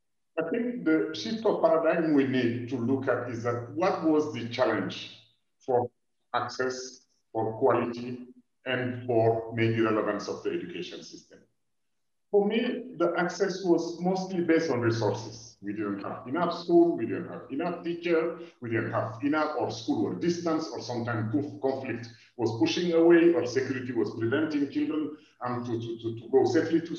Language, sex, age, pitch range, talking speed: English, male, 50-69, 120-175 Hz, 165 wpm